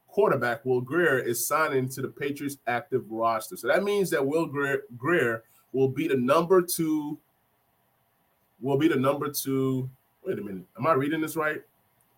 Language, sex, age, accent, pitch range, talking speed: English, male, 20-39, American, 130-180 Hz, 175 wpm